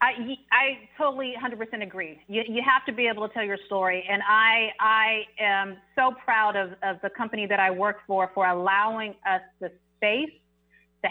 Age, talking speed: 30-49, 190 wpm